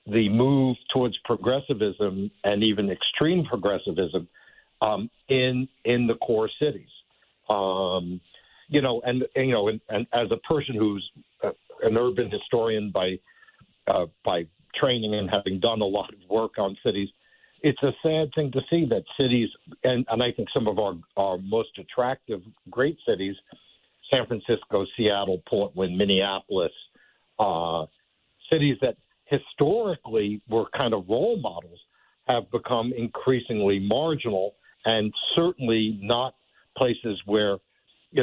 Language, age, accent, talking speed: English, 60-79, American, 140 wpm